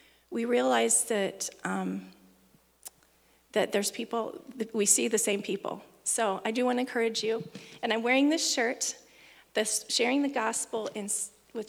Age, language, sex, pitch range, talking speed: 40-59, English, female, 195-235 Hz, 160 wpm